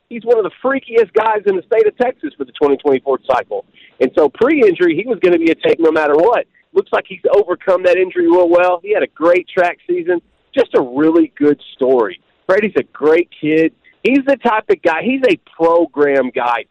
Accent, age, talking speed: American, 40-59, 215 wpm